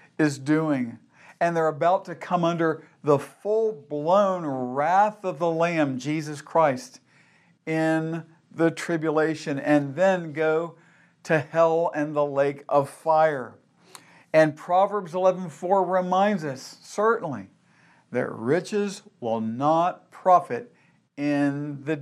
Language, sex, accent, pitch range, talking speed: English, male, American, 140-170 Hz, 115 wpm